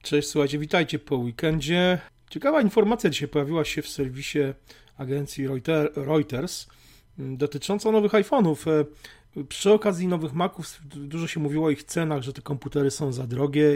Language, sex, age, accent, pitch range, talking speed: Polish, male, 40-59, native, 125-150 Hz, 145 wpm